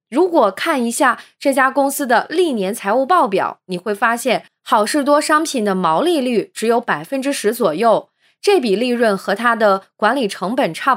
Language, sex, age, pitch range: Chinese, female, 20-39, 195-280 Hz